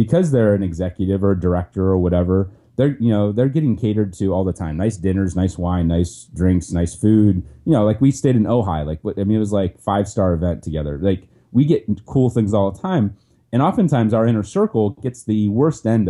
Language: English